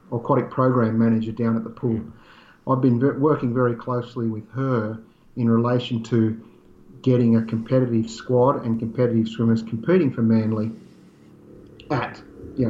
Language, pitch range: English, 115-125 Hz